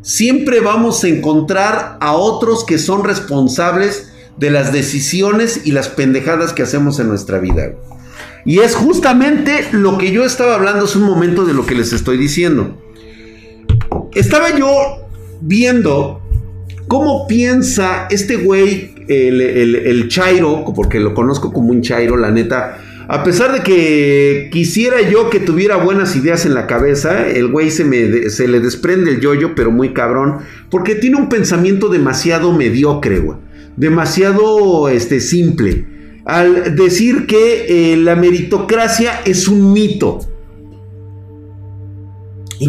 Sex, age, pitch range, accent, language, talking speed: male, 50-69, 125-205 Hz, Mexican, Spanish, 140 wpm